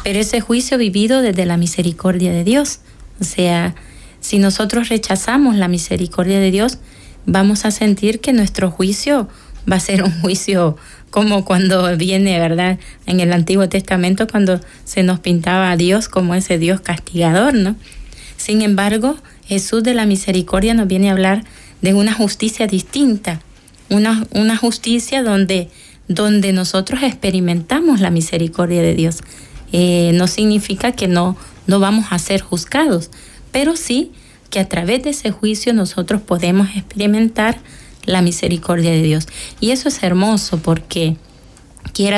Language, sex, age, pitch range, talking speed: Spanish, female, 30-49, 180-215 Hz, 145 wpm